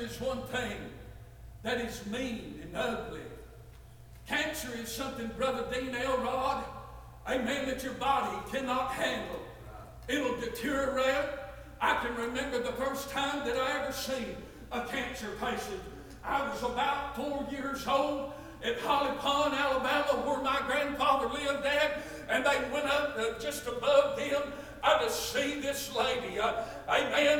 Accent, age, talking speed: American, 60-79, 145 wpm